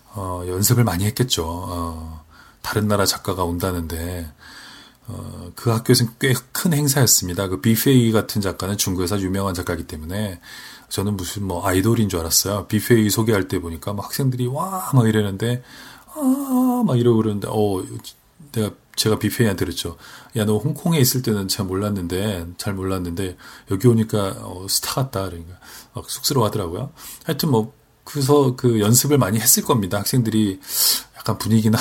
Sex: male